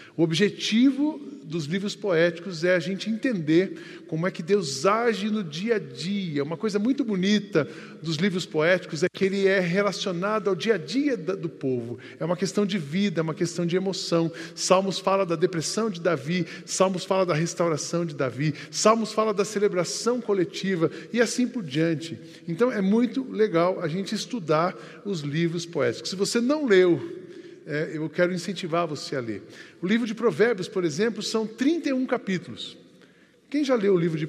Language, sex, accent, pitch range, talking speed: Portuguese, male, Brazilian, 155-205 Hz, 180 wpm